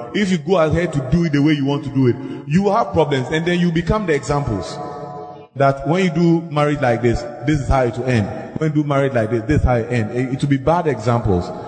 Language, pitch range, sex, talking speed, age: English, 120-165 Hz, male, 270 wpm, 30-49